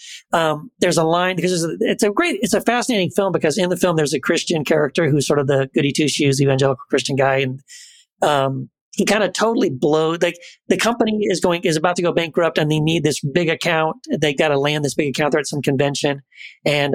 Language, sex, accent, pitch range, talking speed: English, male, American, 145-185 Hz, 235 wpm